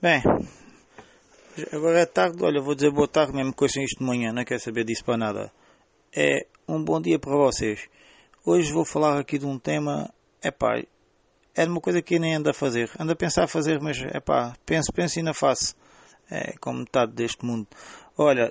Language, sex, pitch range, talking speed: Portuguese, male, 120-175 Hz, 210 wpm